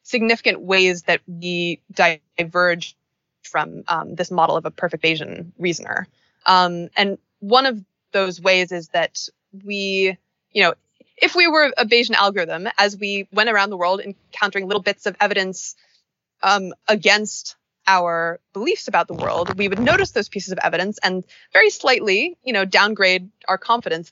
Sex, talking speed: female, 160 wpm